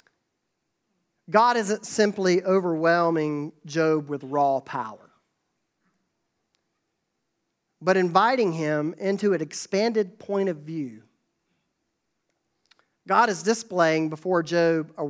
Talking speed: 90 wpm